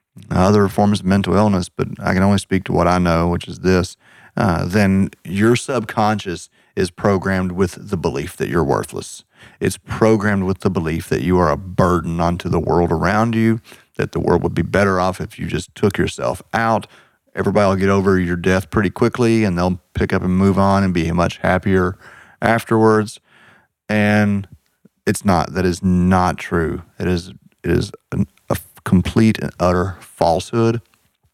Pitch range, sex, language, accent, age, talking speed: 90-105 Hz, male, English, American, 30-49, 180 wpm